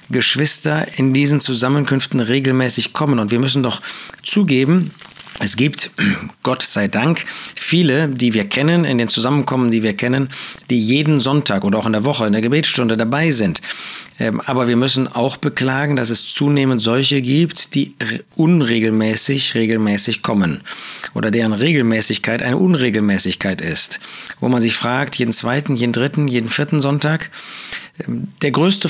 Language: German